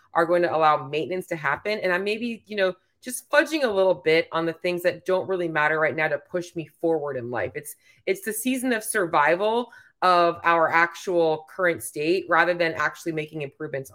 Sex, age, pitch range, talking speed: female, 20-39, 145-185 Hz, 210 wpm